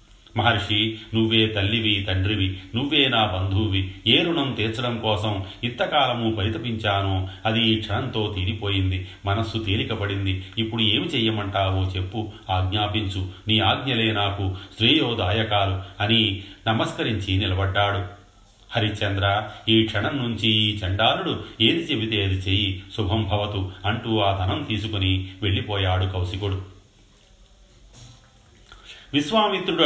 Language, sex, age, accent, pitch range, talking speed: Telugu, male, 30-49, native, 100-115 Hz, 95 wpm